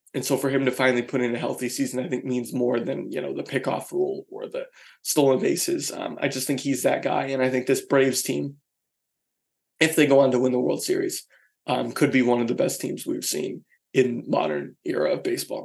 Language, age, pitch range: English, 20-39, 130-155 Hz